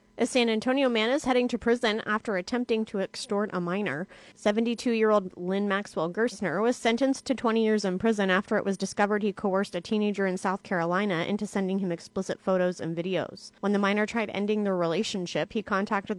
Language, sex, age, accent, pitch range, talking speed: English, female, 30-49, American, 185-225 Hz, 195 wpm